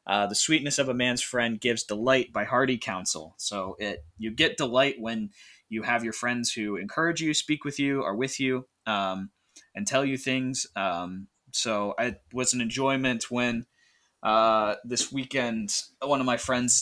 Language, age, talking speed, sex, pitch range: English, 20-39, 180 wpm, male, 110-135 Hz